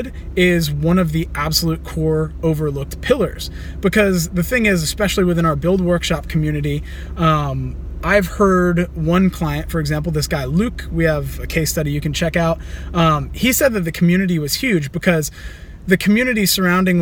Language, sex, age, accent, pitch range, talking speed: English, male, 20-39, American, 155-185 Hz, 175 wpm